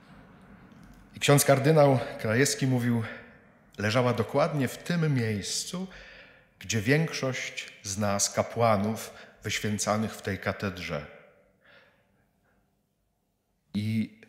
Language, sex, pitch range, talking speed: Polish, male, 105-140 Hz, 80 wpm